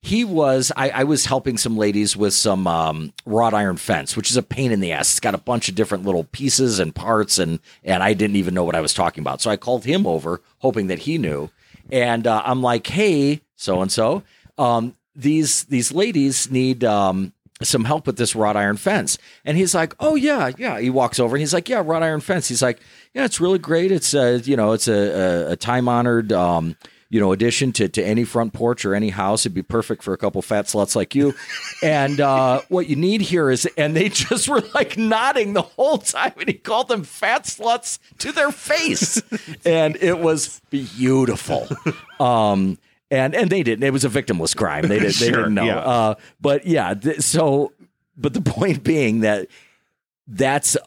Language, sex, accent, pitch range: English, male, American, 105-150 Hz